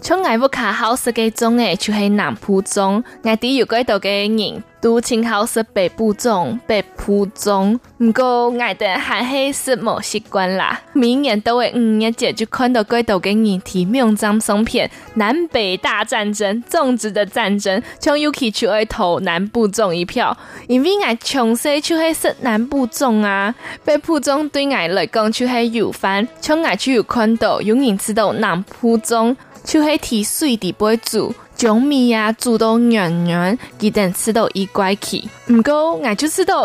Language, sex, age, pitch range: Chinese, female, 20-39, 210-255 Hz